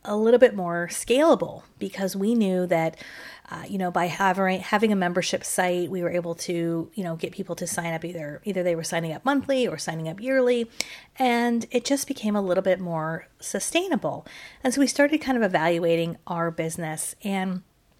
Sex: female